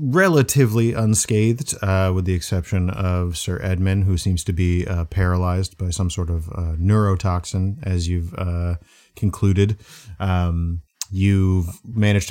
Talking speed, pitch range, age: 135 wpm, 90-100 Hz, 30-49